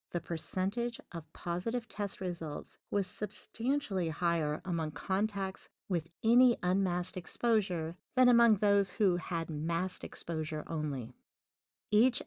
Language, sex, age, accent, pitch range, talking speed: English, female, 50-69, American, 160-215 Hz, 115 wpm